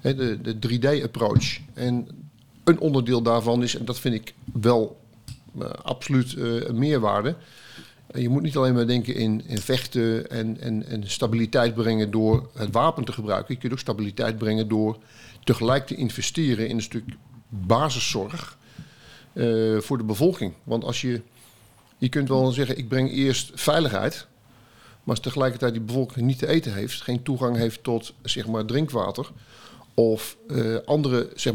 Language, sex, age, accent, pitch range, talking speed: Dutch, male, 50-69, Dutch, 115-130 Hz, 160 wpm